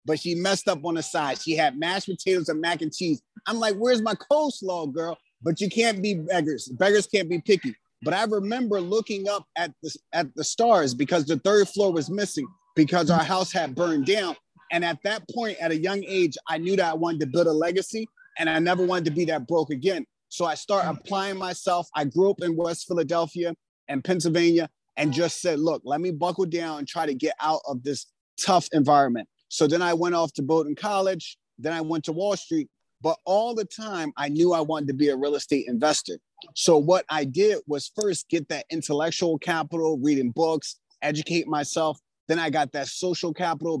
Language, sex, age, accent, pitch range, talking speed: English, male, 30-49, American, 155-190 Hz, 210 wpm